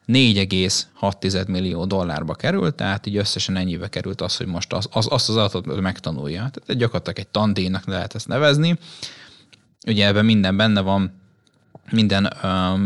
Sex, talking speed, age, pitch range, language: male, 145 wpm, 20-39, 95-120 Hz, Hungarian